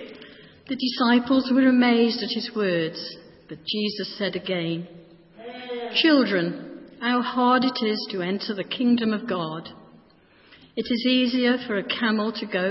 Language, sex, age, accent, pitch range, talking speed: English, female, 50-69, British, 180-235 Hz, 140 wpm